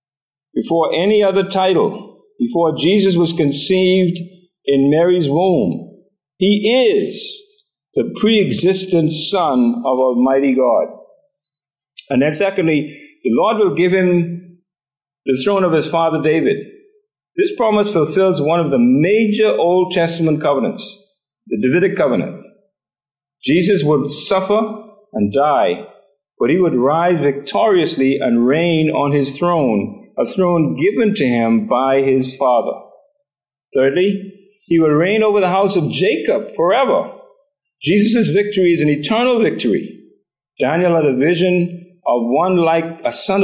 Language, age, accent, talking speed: English, 50-69, American, 130 wpm